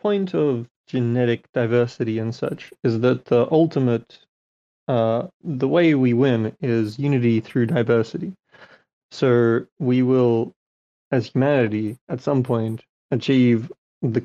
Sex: male